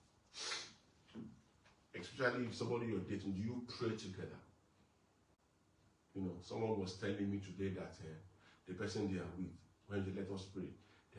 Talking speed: 155 wpm